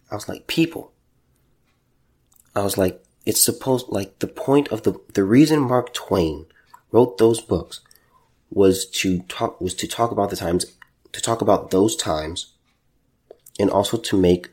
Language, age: English, 30-49